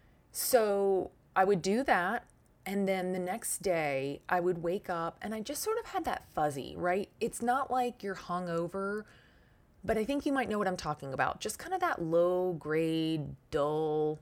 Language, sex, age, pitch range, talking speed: English, female, 20-39, 160-200 Hz, 190 wpm